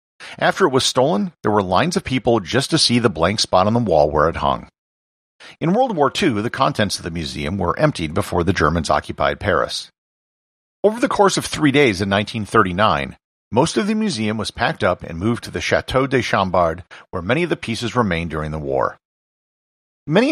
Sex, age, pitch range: male, 50-69, 85-130 Hz